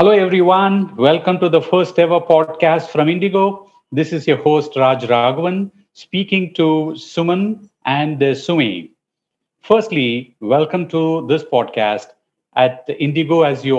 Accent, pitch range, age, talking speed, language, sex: Indian, 125-175 Hz, 50-69, 130 wpm, English, male